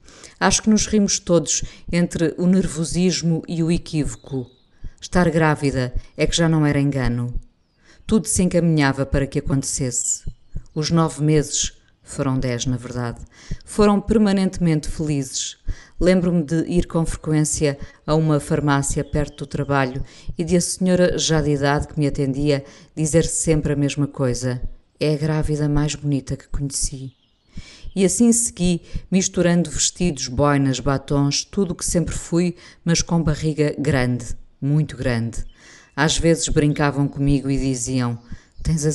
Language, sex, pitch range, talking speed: Portuguese, female, 135-170 Hz, 145 wpm